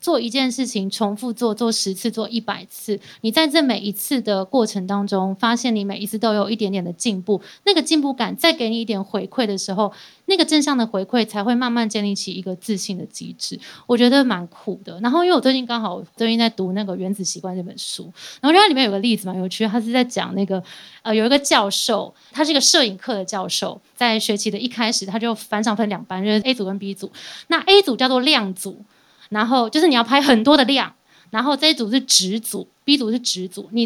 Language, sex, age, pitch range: Chinese, female, 20-39, 200-255 Hz